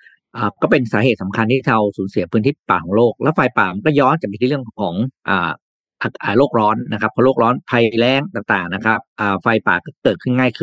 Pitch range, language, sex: 105-145 Hz, Thai, male